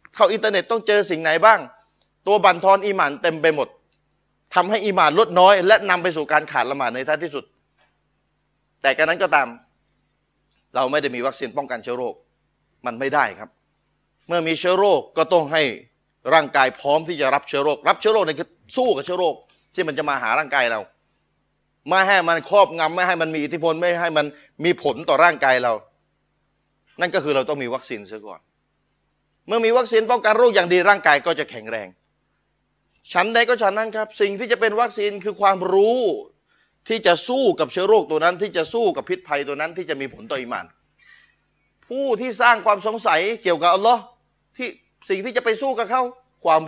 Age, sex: 30-49, male